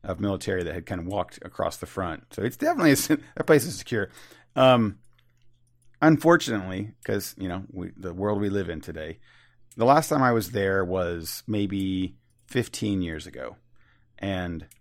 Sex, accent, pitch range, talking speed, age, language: male, American, 95-120 Hz, 165 wpm, 40-59, English